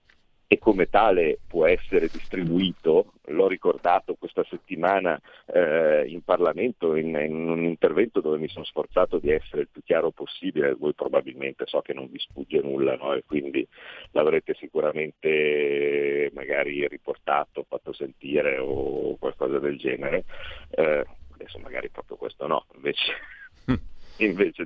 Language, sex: Italian, male